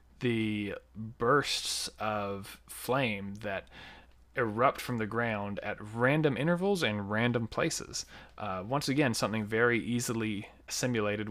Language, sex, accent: English, male, American